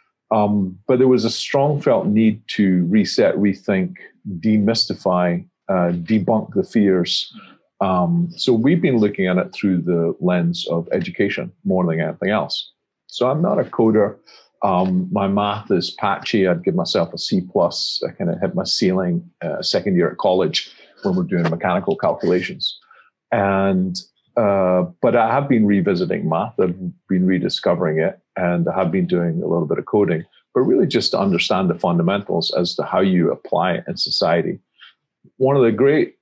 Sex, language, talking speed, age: male, English, 175 wpm, 40-59